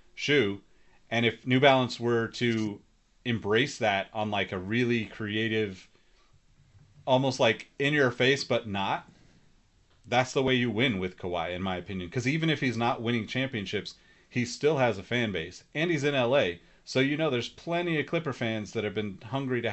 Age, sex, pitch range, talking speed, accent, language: 30-49, male, 100-130 Hz, 185 wpm, American, English